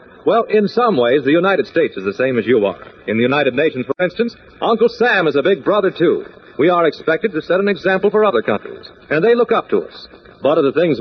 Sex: male